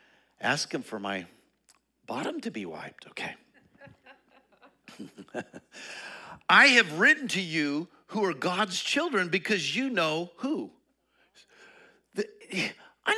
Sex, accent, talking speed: male, American, 105 wpm